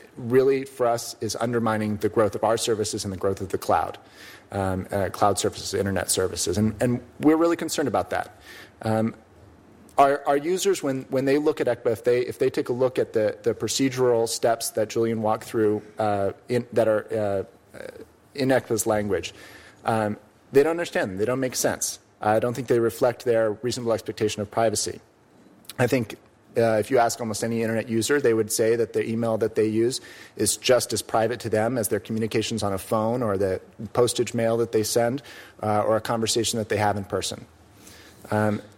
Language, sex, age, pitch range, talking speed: English, male, 30-49, 105-120 Hz, 200 wpm